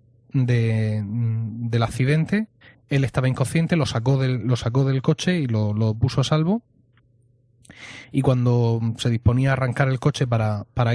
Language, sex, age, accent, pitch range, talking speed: Spanish, male, 30-49, Spanish, 115-135 Hz, 160 wpm